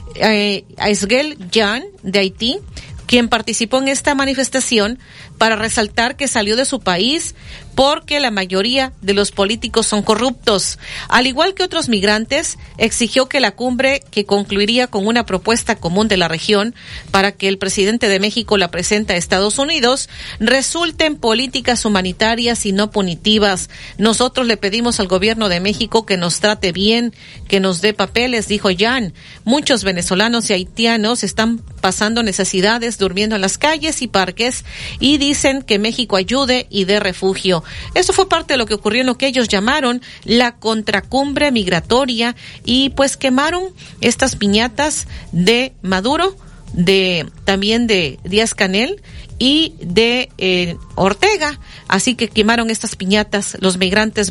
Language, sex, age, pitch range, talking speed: Spanish, female, 40-59, 200-245 Hz, 150 wpm